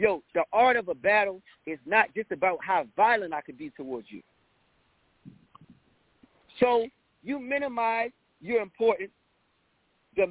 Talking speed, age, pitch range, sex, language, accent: 135 wpm, 40-59, 195-250 Hz, male, English, American